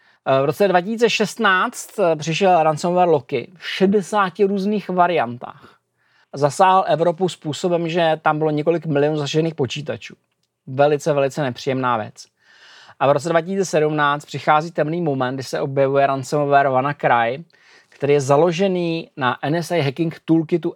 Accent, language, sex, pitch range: native, Czech, male, 145-185 Hz